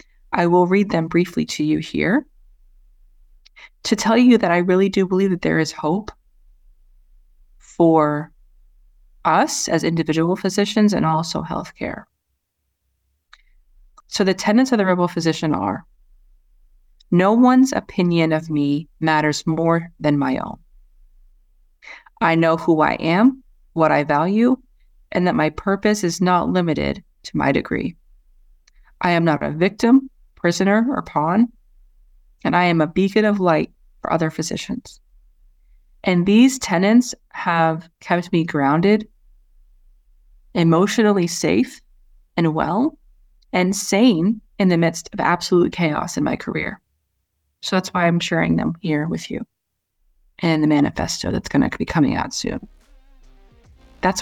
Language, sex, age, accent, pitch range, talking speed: English, female, 30-49, American, 155-210 Hz, 135 wpm